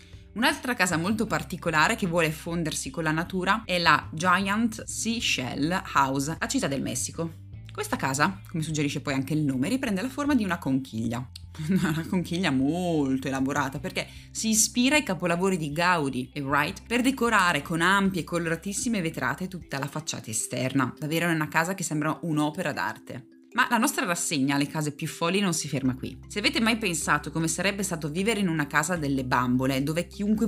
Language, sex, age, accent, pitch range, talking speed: Italian, female, 20-39, native, 145-200 Hz, 180 wpm